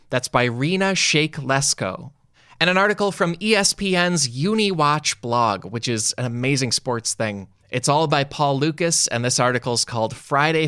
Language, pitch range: English, 125-170 Hz